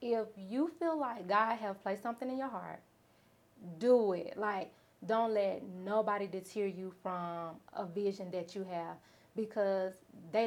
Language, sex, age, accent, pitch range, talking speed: English, female, 30-49, American, 195-235 Hz, 155 wpm